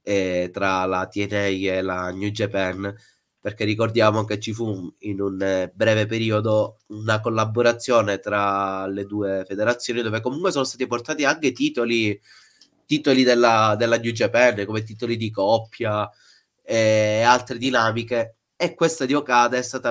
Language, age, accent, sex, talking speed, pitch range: Italian, 30-49, native, male, 145 wpm, 105-130 Hz